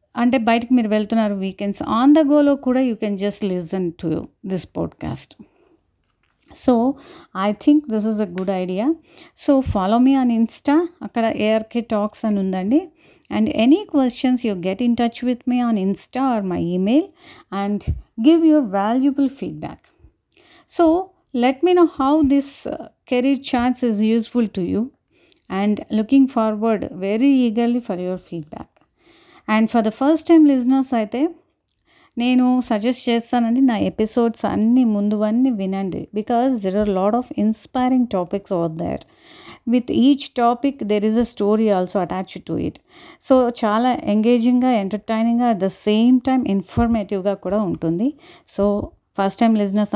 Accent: native